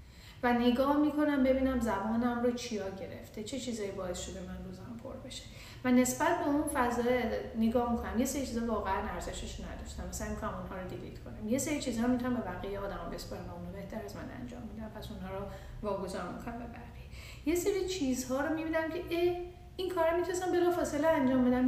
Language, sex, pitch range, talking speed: Persian, female, 220-275 Hz, 195 wpm